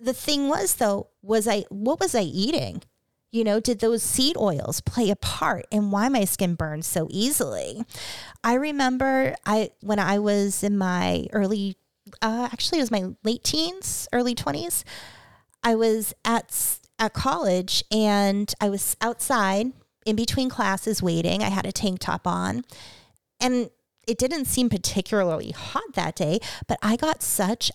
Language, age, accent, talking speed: English, 30-49, American, 160 wpm